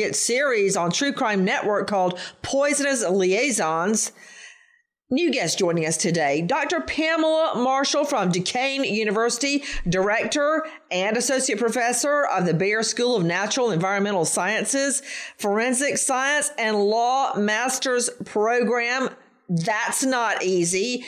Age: 40-59